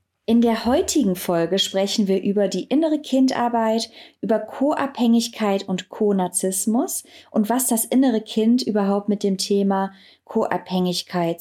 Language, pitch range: German, 195-250 Hz